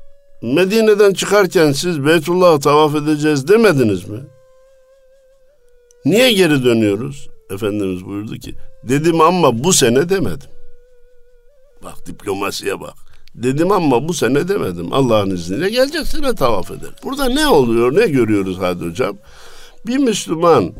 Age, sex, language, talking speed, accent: 60-79, male, Turkish, 120 wpm, native